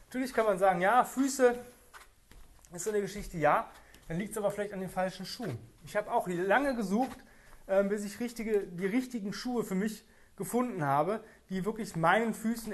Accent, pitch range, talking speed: German, 180-225 Hz, 190 wpm